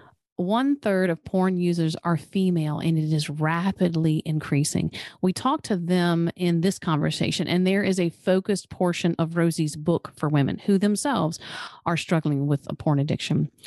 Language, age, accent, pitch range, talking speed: English, 40-59, American, 160-190 Hz, 160 wpm